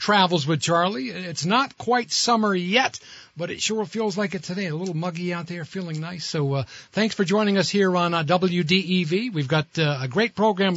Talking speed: 210 wpm